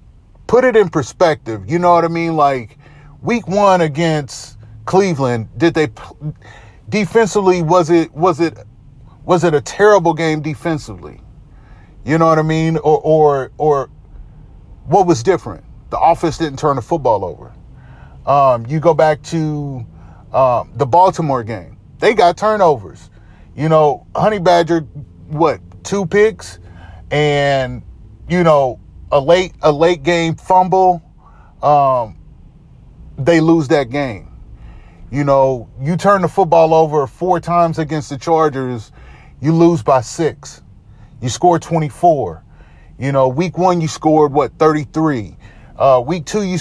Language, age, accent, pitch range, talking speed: English, 30-49, American, 125-170 Hz, 140 wpm